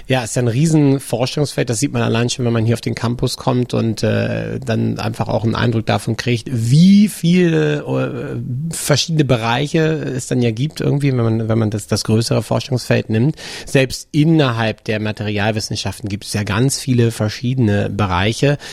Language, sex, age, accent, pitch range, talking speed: German, male, 30-49, German, 105-135 Hz, 180 wpm